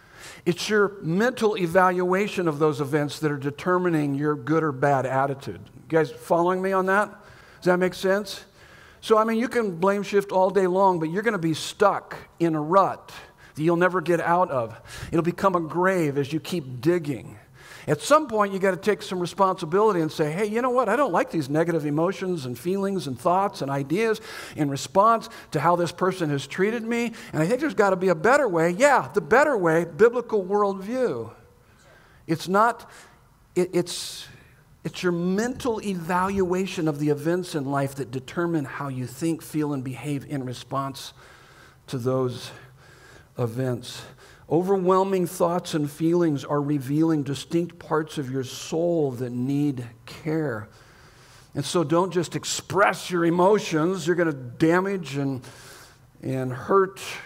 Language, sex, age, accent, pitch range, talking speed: English, male, 50-69, American, 140-190 Hz, 170 wpm